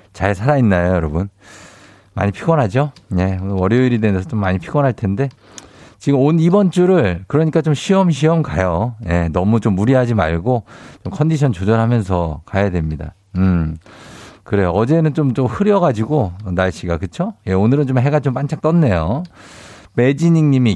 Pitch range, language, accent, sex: 95-135 Hz, Korean, native, male